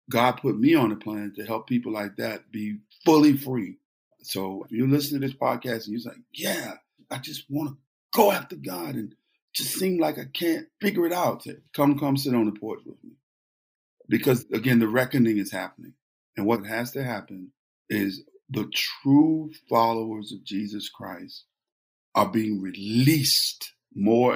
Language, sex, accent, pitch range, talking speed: English, male, American, 100-135 Hz, 175 wpm